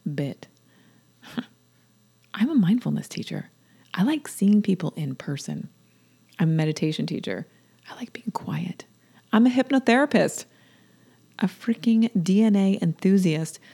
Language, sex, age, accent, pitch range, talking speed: English, female, 30-49, American, 170-215 Hz, 115 wpm